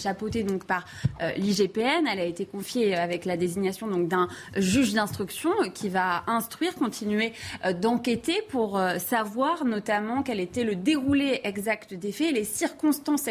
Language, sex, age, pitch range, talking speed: French, female, 20-39, 195-255 Hz, 160 wpm